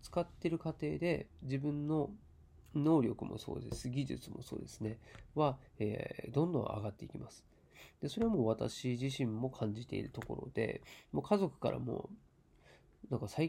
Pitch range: 120-160 Hz